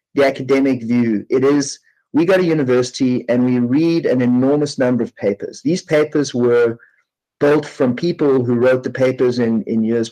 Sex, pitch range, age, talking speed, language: male, 125-160 Hz, 30-49, 180 wpm, English